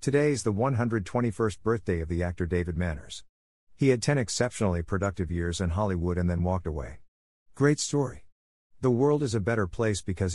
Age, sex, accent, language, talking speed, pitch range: 50-69, male, American, English, 180 wpm, 85-120 Hz